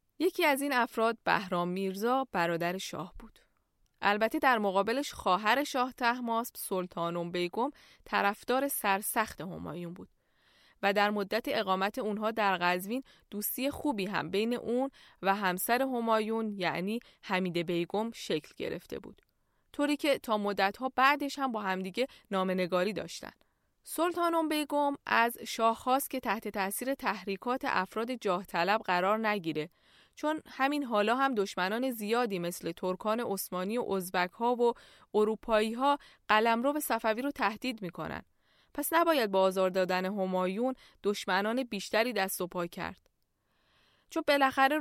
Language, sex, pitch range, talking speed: Persian, female, 190-255 Hz, 135 wpm